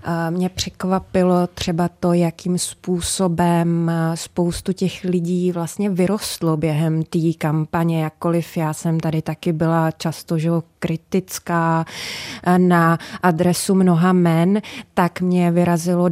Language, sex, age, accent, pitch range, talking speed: Czech, female, 20-39, native, 175-200 Hz, 110 wpm